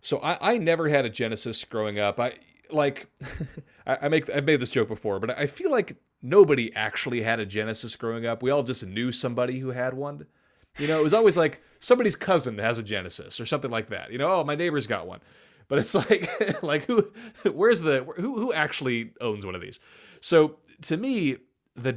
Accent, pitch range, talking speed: American, 110-150 Hz, 210 wpm